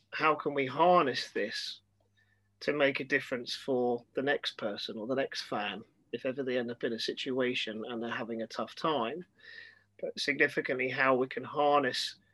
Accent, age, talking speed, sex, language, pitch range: British, 30-49, 180 wpm, male, English, 115-145 Hz